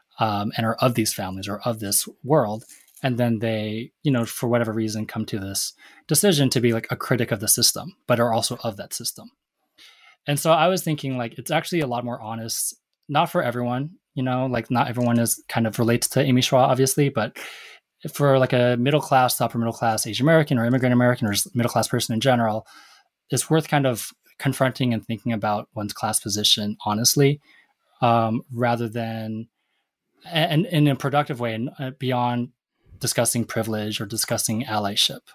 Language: English